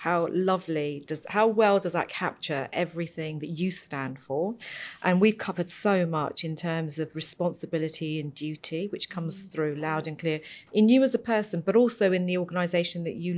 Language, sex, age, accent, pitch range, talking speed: English, female, 40-59, British, 160-190 Hz, 190 wpm